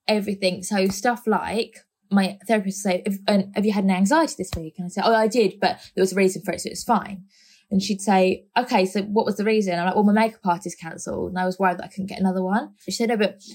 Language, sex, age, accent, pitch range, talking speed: English, female, 20-39, British, 185-215 Hz, 285 wpm